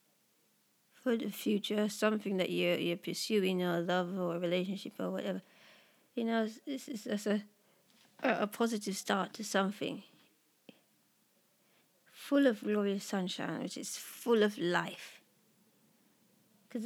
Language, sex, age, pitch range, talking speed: English, female, 20-39, 190-220 Hz, 130 wpm